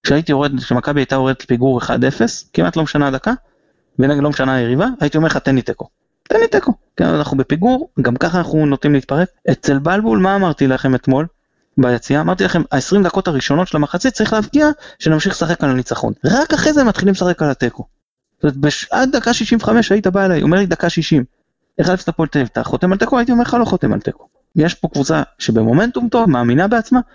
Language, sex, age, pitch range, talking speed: Hebrew, male, 20-39, 125-190 Hz, 175 wpm